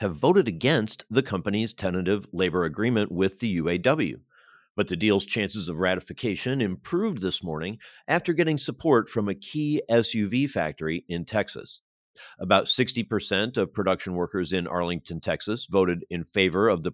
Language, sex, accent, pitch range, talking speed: English, male, American, 90-115 Hz, 150 wpm